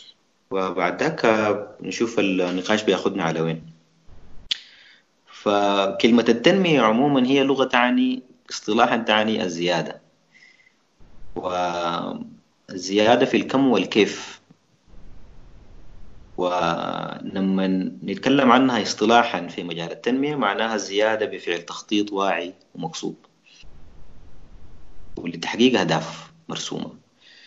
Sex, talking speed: male, 75 wpm